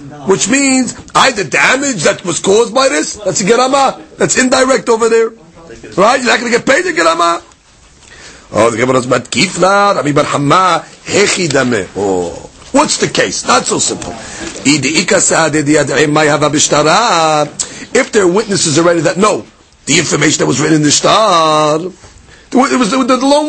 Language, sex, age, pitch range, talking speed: English, male, 40-59, 170-255 Hz, 125 wpm